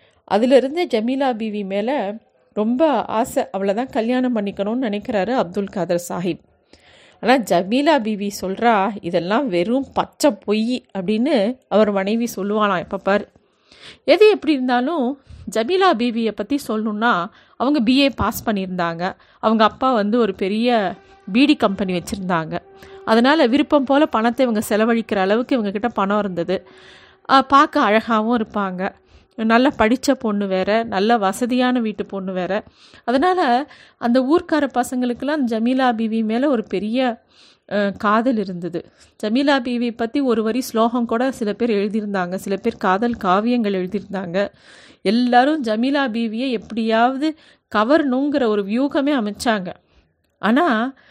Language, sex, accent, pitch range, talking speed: Tamil, female, native, 200-255 Hz, 120 wpm